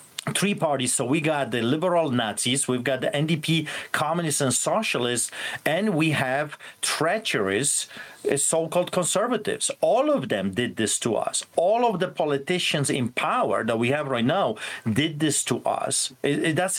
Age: 40-59